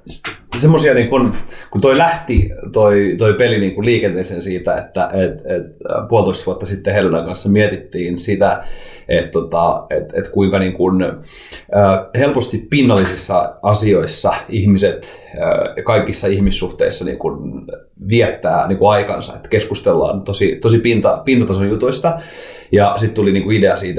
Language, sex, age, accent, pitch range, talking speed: Finnish, male, 30-49, native, 95-115 Hz, 125 wpm